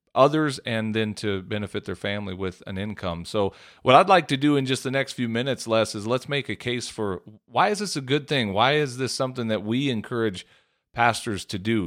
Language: English